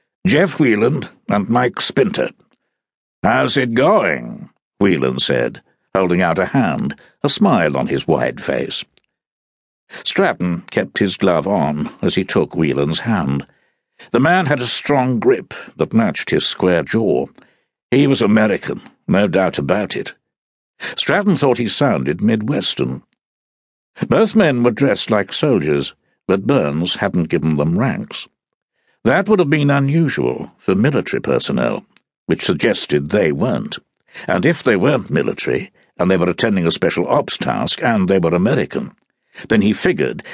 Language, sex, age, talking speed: English, male, 60-79, 145 wpm